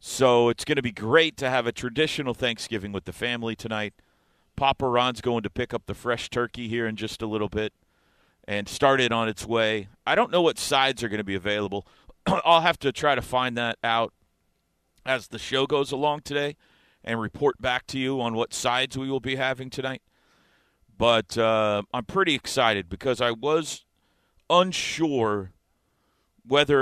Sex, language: male, English